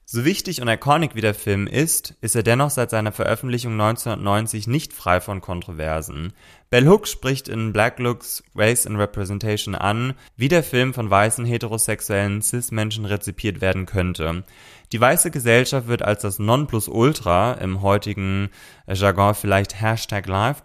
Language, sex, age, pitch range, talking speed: German, male, 20-39, 95-125 Hz, 155 wpm